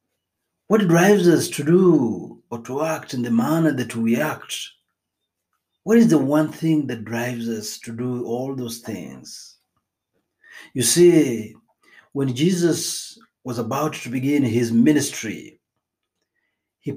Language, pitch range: Swahili, 115-155 Hz